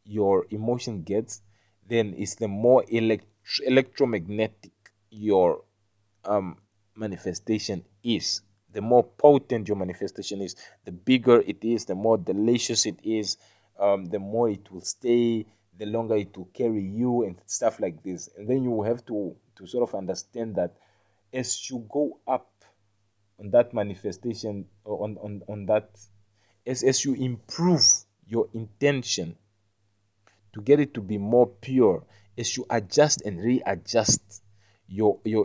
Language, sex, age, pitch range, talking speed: English, male, 30-49, 100-120 Hz, 145 wpm